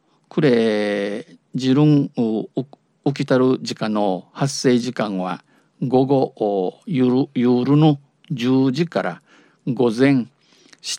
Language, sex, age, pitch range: Japanese, male, 50-69, 115-150 Hz